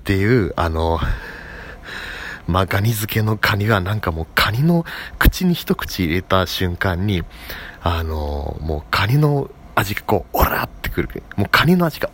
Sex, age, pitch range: male, 40-59, 85-130 Hz